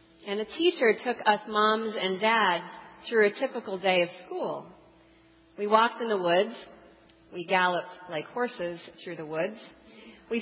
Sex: female